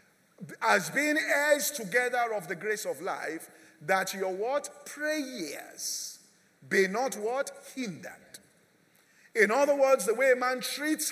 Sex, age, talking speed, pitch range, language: male, 50-69, 135 wpm, 230-285 Hz, English